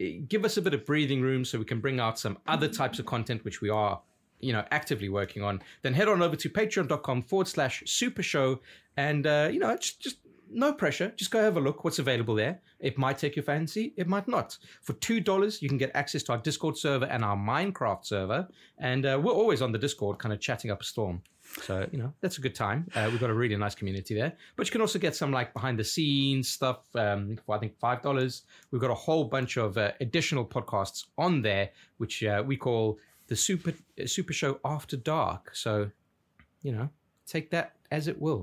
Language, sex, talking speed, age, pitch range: English, male, 230 wpm, 30-49, 110-160 Hz